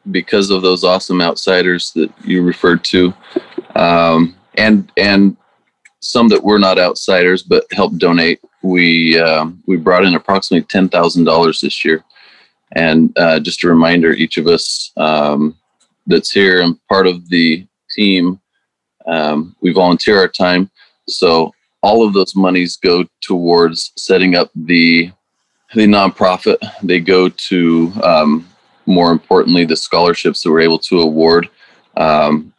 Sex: male